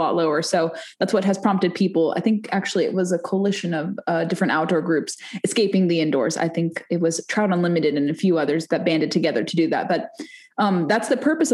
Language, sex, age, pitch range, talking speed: English, female, 20-39, 170-205 Hz, 230 wpm